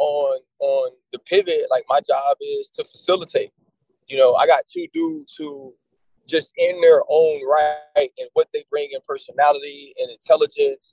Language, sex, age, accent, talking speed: English, male, 20-39, American, 165 wpm